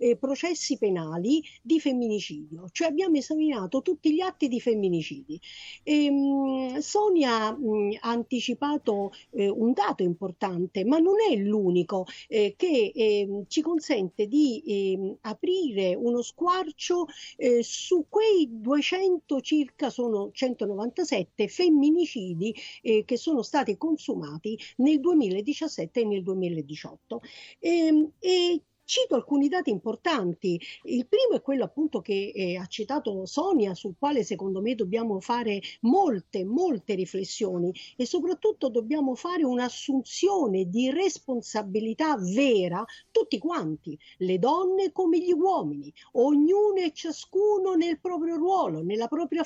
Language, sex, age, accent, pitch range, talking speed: Italian, female, 50-69, native, 210-320 Hz, 125 wpm